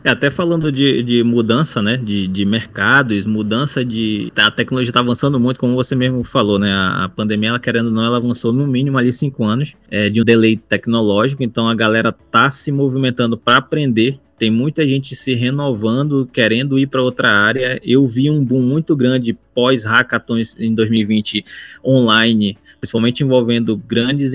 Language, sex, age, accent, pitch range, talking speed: Portuguese, male, 20-39, Brazilian, 120-150 Hz, 175 wpm